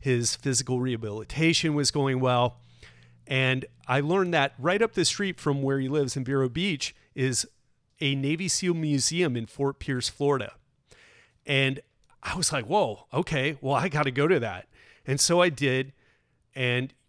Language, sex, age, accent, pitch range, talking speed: English, male, 30-49, American, 125-150 Hz, 170 wpm